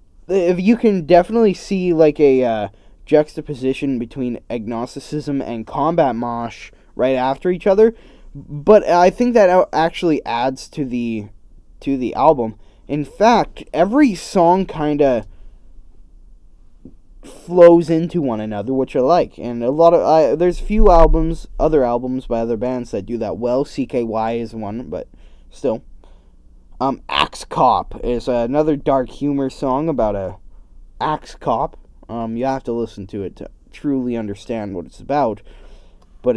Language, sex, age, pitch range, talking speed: English, male, 10-29, 115-170 Hz, 150 wpm